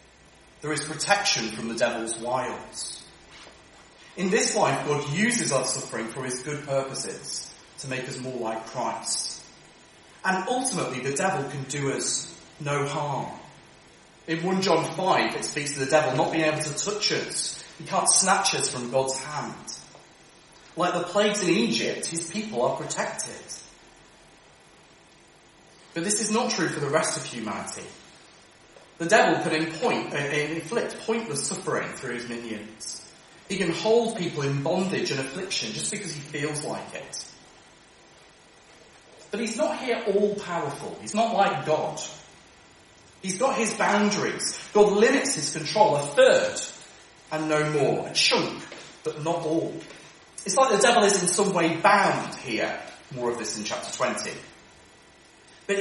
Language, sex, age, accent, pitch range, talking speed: English, male, 30-49, British, 140-200 Hz, 155 wpm